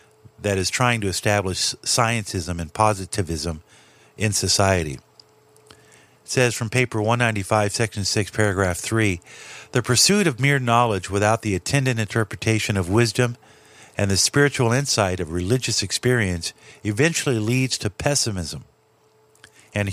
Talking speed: 125 wpm